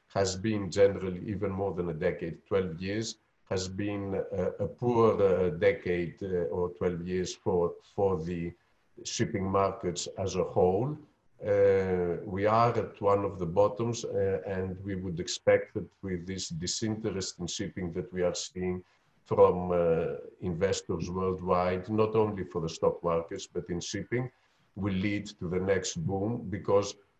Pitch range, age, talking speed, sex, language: 90-110 Hz, 50-69, 160 wpm, male, English